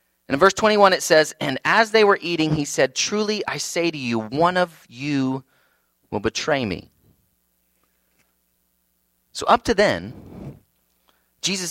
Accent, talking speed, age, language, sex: American, 150 wpm, 30-49, English, male